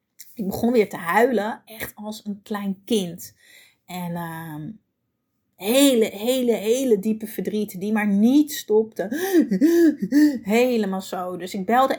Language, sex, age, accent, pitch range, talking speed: Dutch, female, 30-49, Dutch, 185-225 Hz, 130 wpm